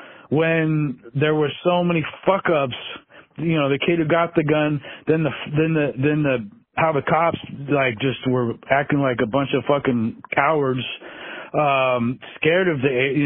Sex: male